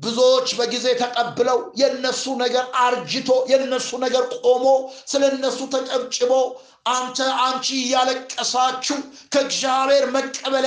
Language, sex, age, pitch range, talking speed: Amharic, male, 60-79, 255-280 Hz, 90 wpm